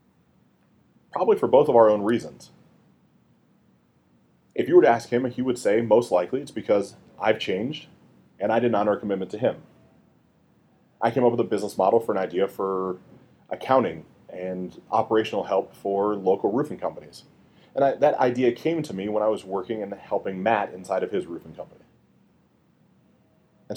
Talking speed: 170 wpm